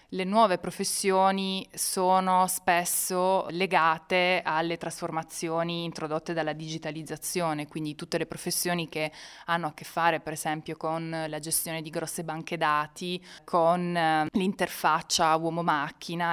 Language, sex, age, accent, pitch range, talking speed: Italian, female, 20-39, native, 160-180 Hz, 120 wpm